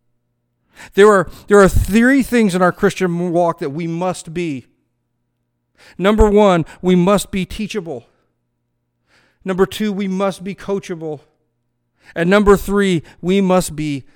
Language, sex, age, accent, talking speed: English, male, 50-69, American, 135 wpm